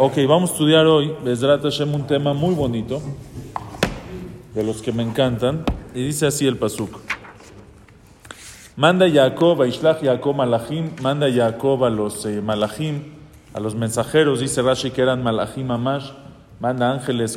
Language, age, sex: English, 40-59, male